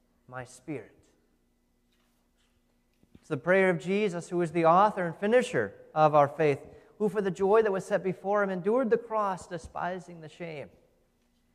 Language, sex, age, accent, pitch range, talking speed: English, male, 30-49, American, 155-195 Hz, 160 wpm